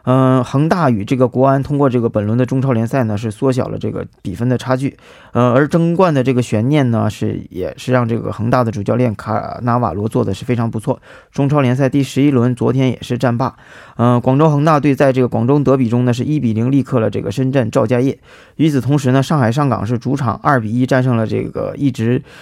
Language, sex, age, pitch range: Korean, male, 20-39, 115-135 Hz